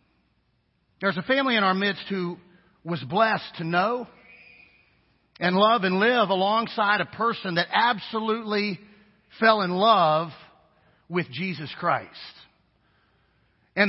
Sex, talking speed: male, 115 wpm